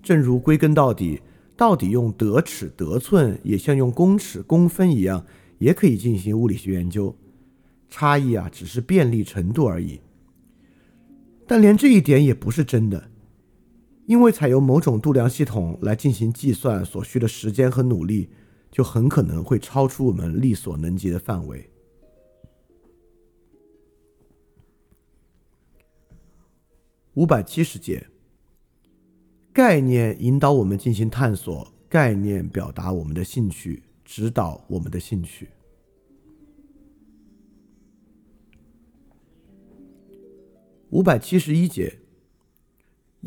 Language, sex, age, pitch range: Chinese, male, 50-69, 95-145 Hz